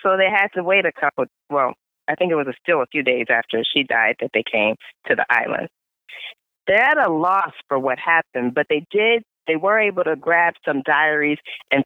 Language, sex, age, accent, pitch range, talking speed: English, female, 40-59, American, 150-200 Hz, 220 wpm